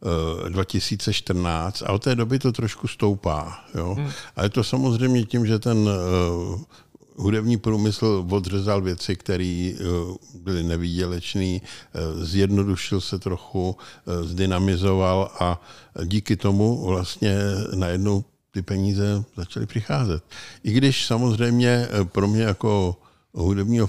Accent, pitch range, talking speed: native, 90-105 Hz, 110 wpm